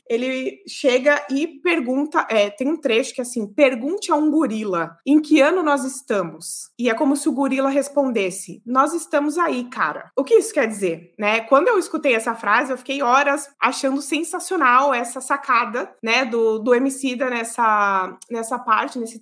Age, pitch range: 20-39, 230-280 Hz